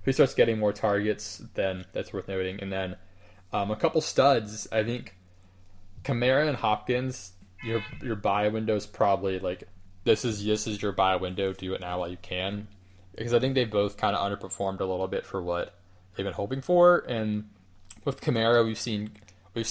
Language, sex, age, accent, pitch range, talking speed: English, male, 20-39, American, 95-110 Hz, 190 wpm